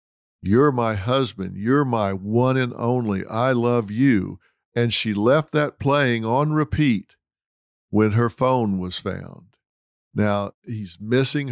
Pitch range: 105-140 Hz